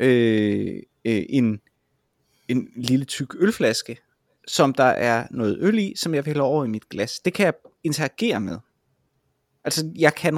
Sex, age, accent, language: male, 30-49, native, Danish